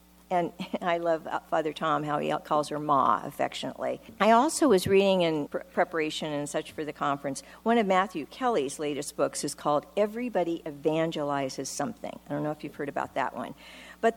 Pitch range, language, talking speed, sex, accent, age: 150-230 Hz, English, 180 wpm, female, American, 50-69